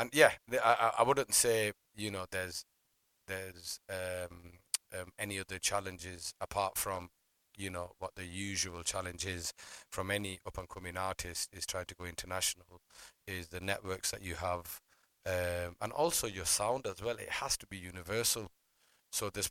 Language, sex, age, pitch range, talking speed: English, male, 30-49, 90-100 Hz, 170 wpm